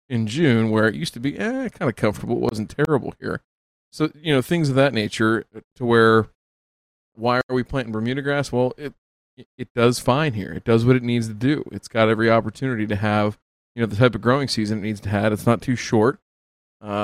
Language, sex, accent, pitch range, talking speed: English, male, American, 105-125 Hz, 230 wpm